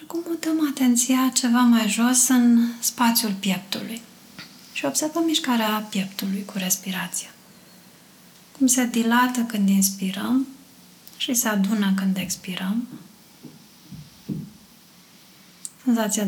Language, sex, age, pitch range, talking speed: Romanian, female, 30-49, 195-245 Hz, 95 wpm